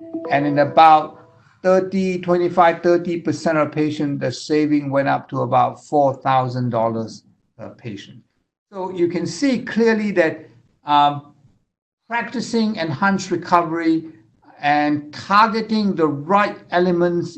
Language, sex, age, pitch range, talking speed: English, male, 60-79, 130-170 Hz, 115 wpm